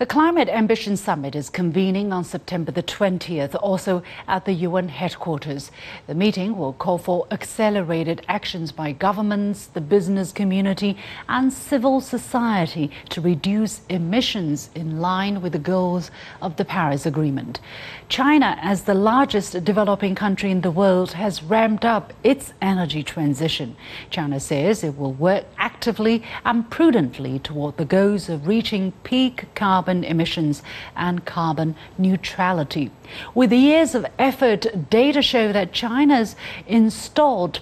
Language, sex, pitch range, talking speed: English, female, 160-215 Hz, 135 wpm